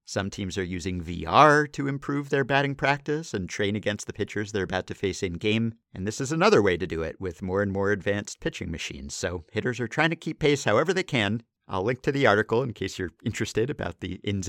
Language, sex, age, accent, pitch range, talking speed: English, male, 50-69, American, 100-145 Hz, 235 wpm